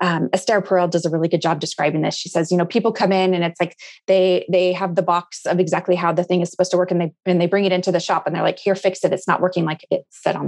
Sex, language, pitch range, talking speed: female, English, 180-230 Hz, 320 wpm